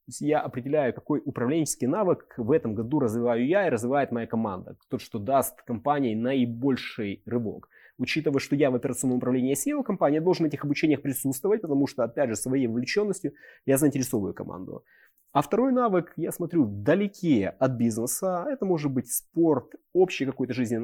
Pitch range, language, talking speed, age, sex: 120-155 Hz, Ukrainian, 175 wpm, 20-39, male